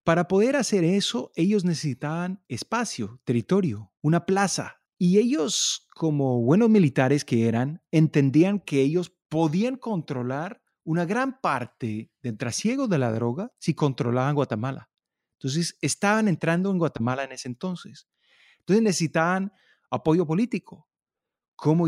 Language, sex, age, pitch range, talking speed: English, male, 30-49, 125-190 Hz, 125 wpm